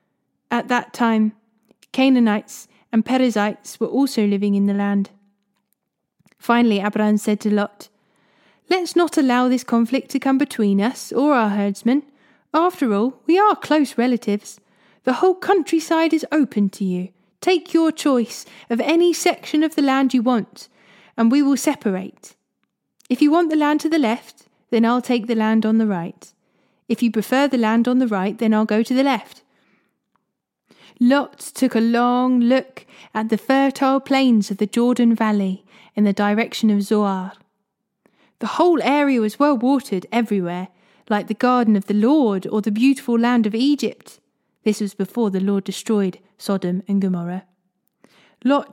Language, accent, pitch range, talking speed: English, British, 205-265 Hz, 165 wpm